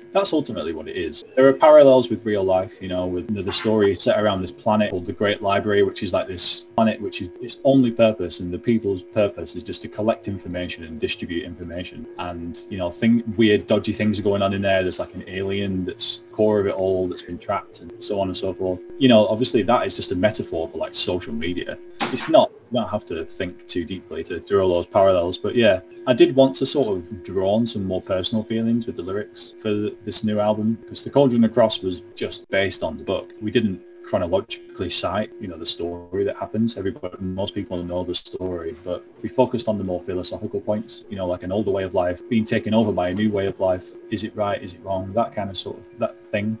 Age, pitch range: 20-39, 95-115 Hz